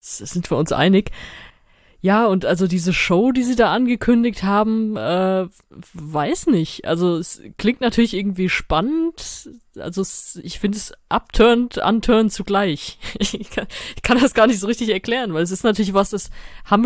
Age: 20-39